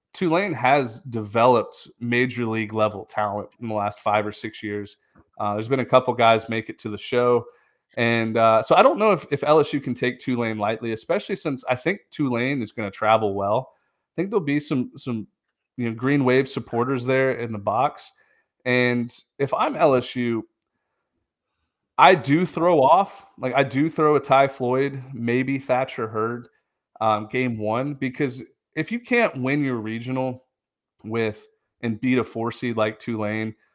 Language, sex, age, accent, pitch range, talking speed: English, male, 30-49, American, 110-135 Hz, 175 wpm